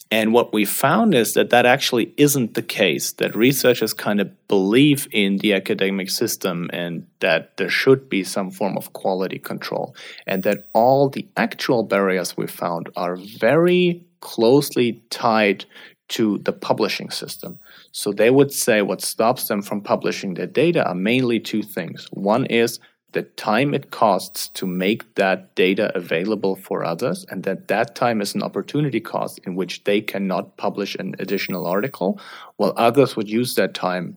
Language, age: English, 30-49